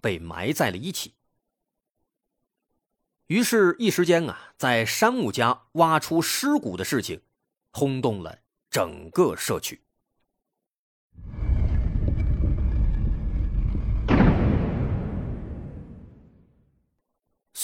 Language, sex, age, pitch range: Chinese, male, 30-49, 110-175 Hz